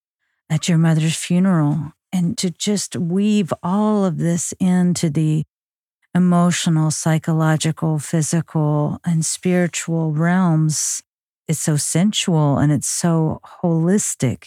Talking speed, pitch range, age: 110 wpm, 155-170 Hz, 50-69